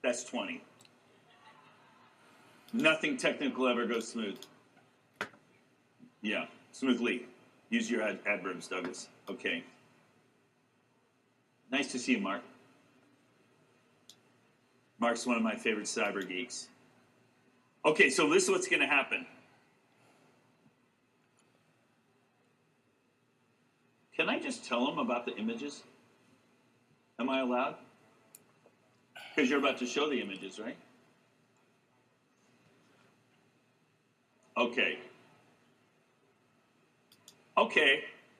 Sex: male